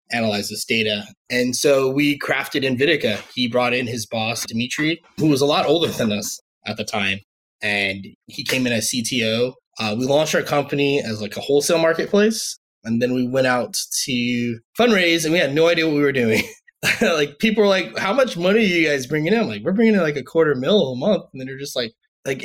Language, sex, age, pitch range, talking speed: English, male, 20-39, 115-150 Hz, 225 wpm